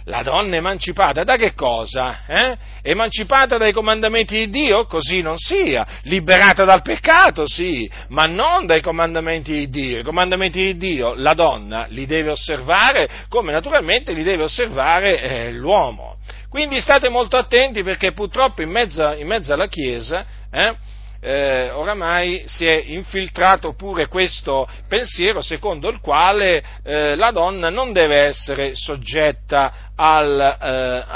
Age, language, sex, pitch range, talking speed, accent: 40-59, Italian, male, 145-225 Hz, 145 wpm, native